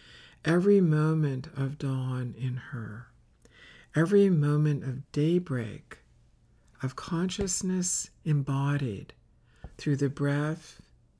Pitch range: 130-160 Hz